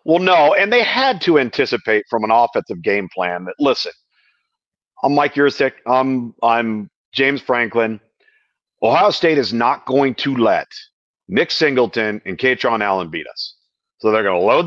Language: English